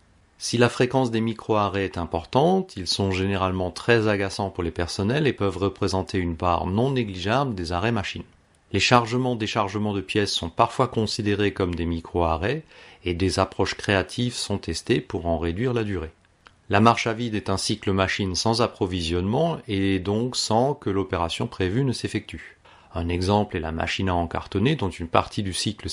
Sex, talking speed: male, 175 wpm